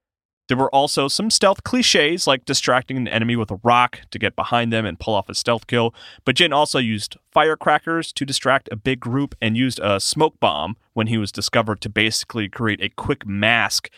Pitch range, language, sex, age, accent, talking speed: 105-130 Hz, English, male, 30-49, American, 205 wpm